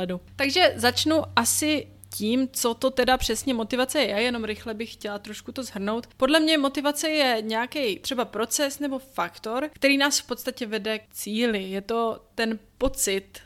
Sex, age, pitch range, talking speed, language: female, 20-39, 210-250 Hz, 170 wpm, Czech